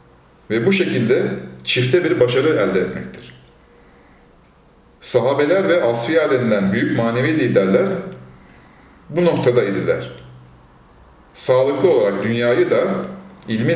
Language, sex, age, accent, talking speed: Turkish, male, 40-59, native, 90 wpm